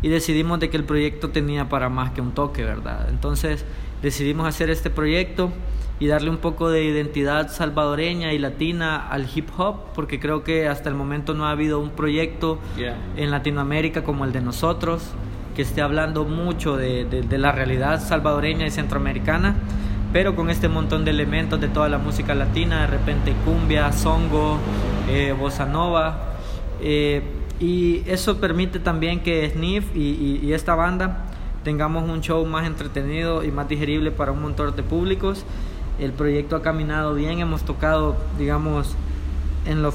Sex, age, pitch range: male, 20-39, 115-160 Hz